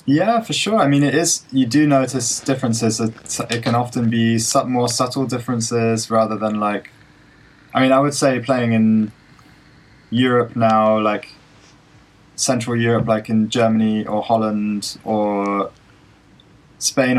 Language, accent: English, British